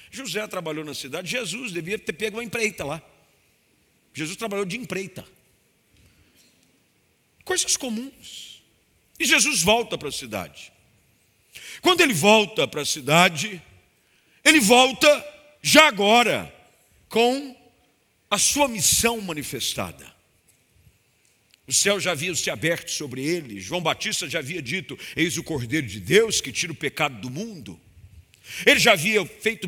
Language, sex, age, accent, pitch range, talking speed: Portuguese, male, 50-69, Brazilian, 150-225 Hz, 135 wpm